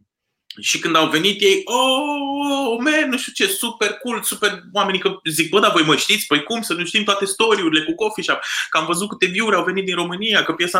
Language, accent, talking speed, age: Romanian, native, 235 wpm, 20-39